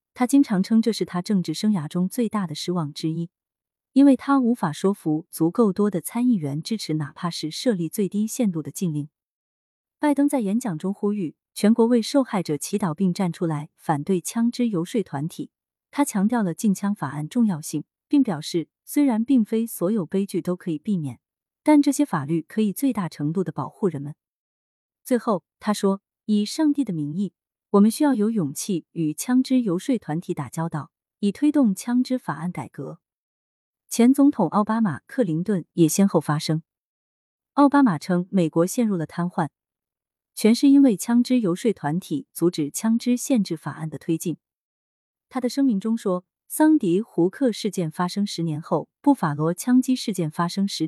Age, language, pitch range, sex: 30-49, Chinese, 165-235 Hz, female